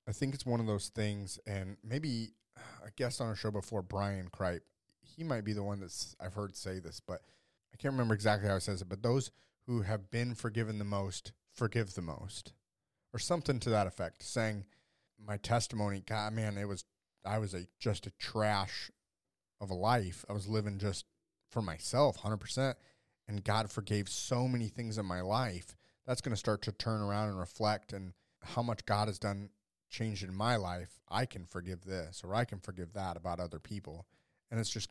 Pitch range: 95-115 Hz